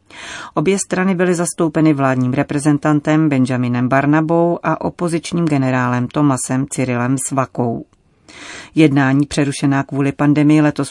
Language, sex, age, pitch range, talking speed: Czech, female, 40-59, 135-160 Hz, 105 wpm